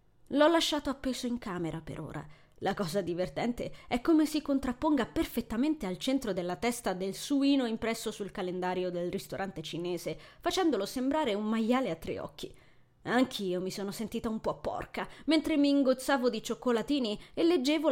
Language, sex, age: Italian, female, 20-39